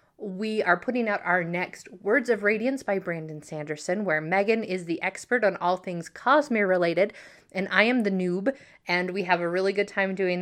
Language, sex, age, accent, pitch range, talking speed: English, female, 30-49, American, 180-245 Hz, 200 wpm